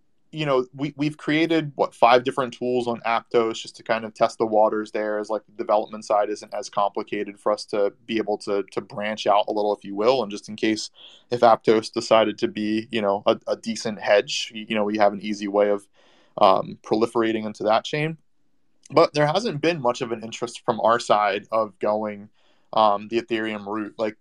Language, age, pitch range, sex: English, 20-39, 105-120 Hz, male